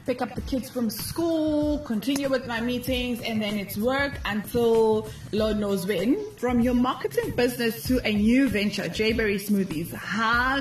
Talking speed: 165 wpm